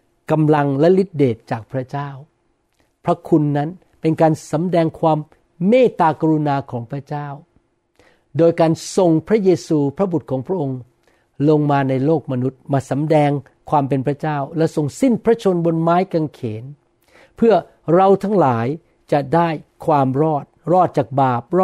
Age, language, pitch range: 60-79, Thai, 135-165 Hz